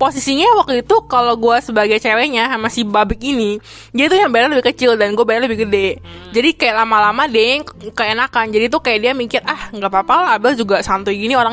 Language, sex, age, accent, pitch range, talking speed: Indonesian, female, 20-39, native, 205-255 Hz, 215 wpm